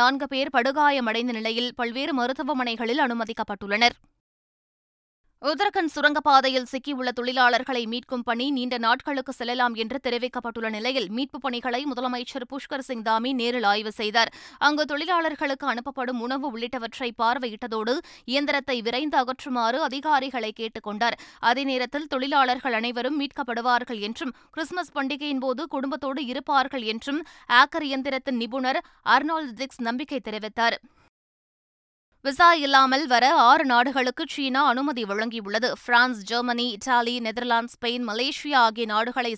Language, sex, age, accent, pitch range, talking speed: Tamil, female, 20-39, native, 235-280 Hz, 110 wpm